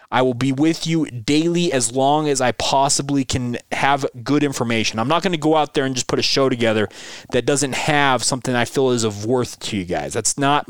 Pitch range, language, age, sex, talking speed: 120-150 Hz, English, 20-39, male, 235 wpm